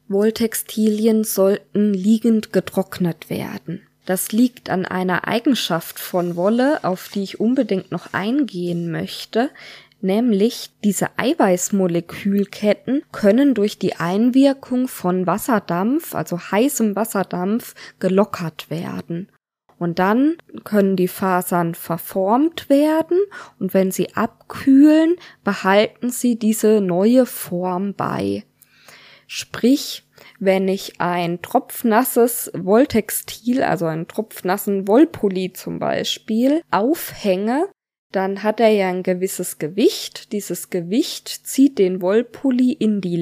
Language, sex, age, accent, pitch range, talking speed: German, female, 20-39, German, 185-245 Hz, 105 wpm